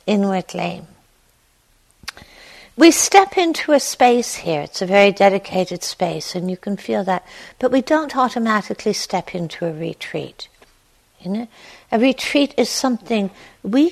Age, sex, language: 60-79, female, English